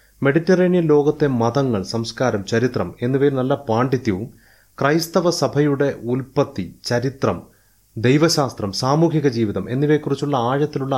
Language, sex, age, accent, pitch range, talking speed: Malayalam, male, 30-49, native, 110-145 Hz, 95 wpm